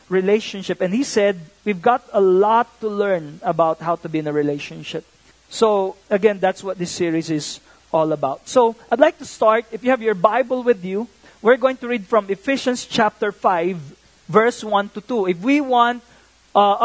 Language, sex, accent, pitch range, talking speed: English, male, Filipino, 195-240 Hz, 190 wpm